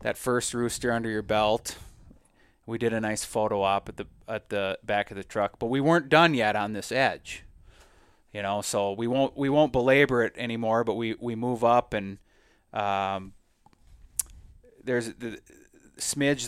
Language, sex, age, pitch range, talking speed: English, male, 30-49, 105-125 Hz, 180 wpm